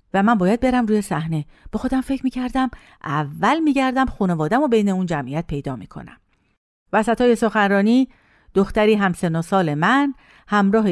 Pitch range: 180-275 Hz